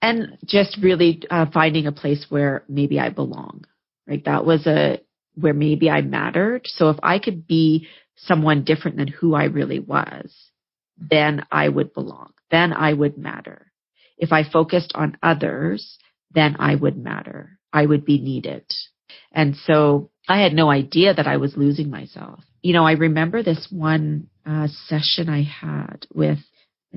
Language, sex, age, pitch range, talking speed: English, female, 40-59, 145-170 Hz, 165 wpm